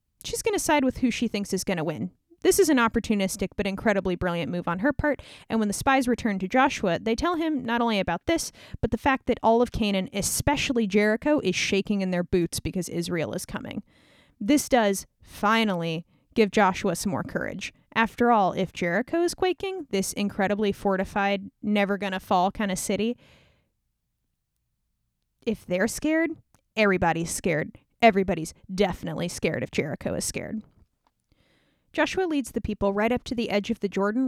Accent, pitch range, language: American, 190-250 Hz, English